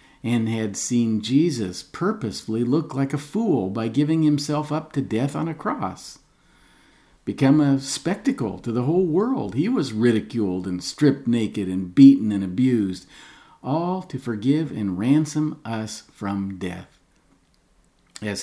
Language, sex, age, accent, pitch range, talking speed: English, male, 50-69, American, 105-145 Hz, 145 wpm